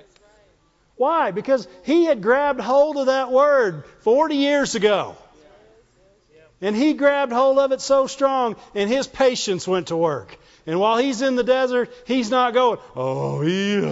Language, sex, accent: English, male, American